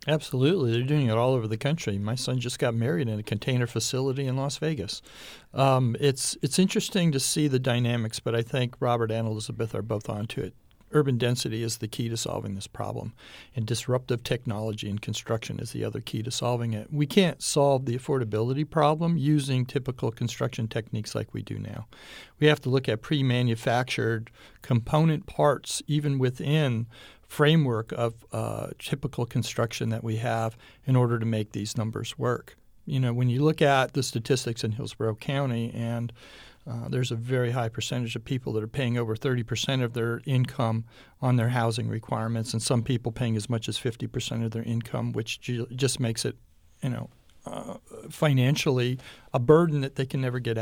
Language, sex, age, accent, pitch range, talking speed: English, male, 60-79, American, 115-140 Hz, 185 wpm